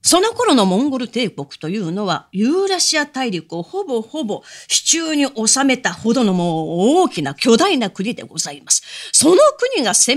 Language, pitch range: Japanese, 175-265 Hz